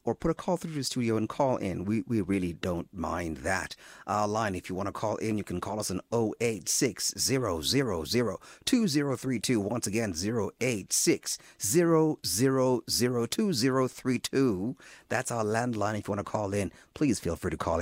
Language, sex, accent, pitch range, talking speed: English, male, American, 105-145 Hz, 160 wpm